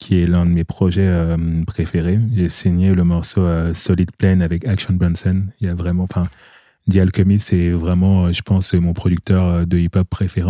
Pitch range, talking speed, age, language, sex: 85-100 Hz, 185 wpm, 20-39, French, male